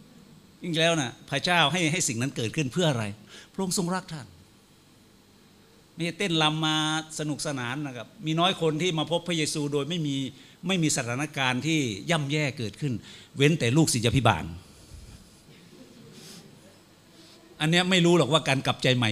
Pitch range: 120-160 Hz